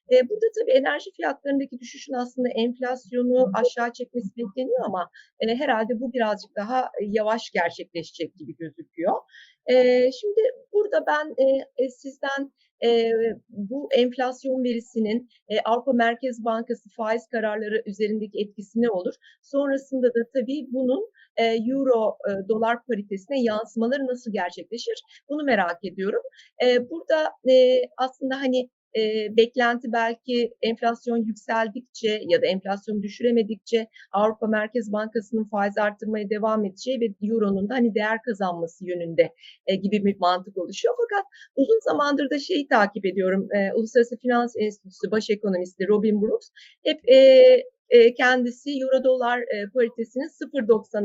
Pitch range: 215-270 Hz